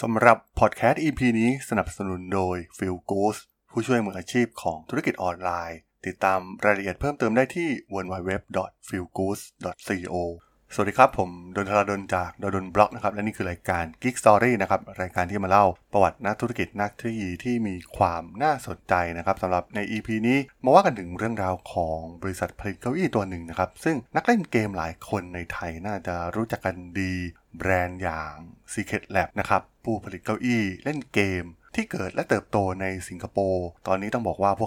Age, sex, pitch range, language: 20-39, male, 95-115 Hz, Thai